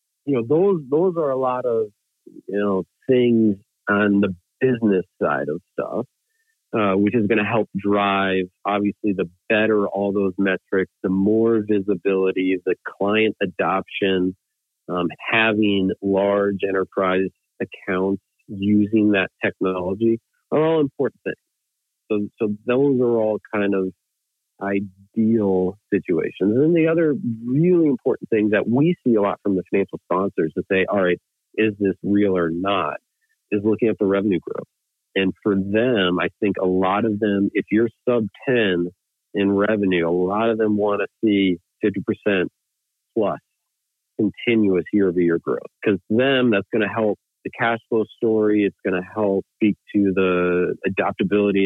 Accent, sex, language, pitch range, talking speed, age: American, male, English, 95-115 Hz, 155 wpm, 40-59